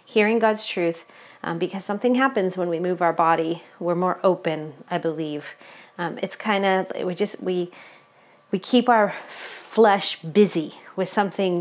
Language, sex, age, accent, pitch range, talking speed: English, female, 30-49, American, 175-215 Hz, 160 wpm